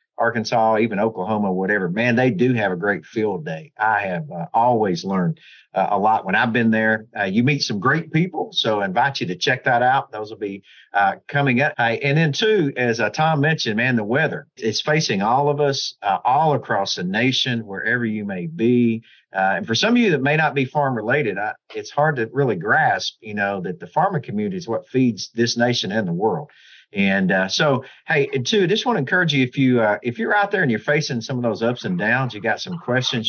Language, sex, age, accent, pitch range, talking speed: English, male, 50-69, American, 110-145 Hz, 235 wpm